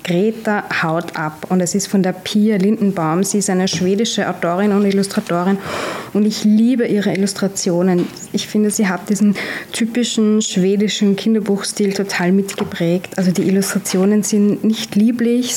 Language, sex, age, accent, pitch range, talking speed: German, female, 20-39, German, 180-210 Hz, 145 wpm